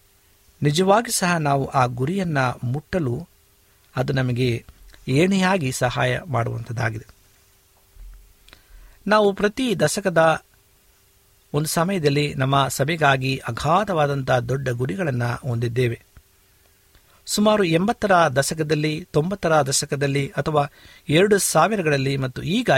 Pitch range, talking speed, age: 115-160 Hz, 85 wpm, 50-69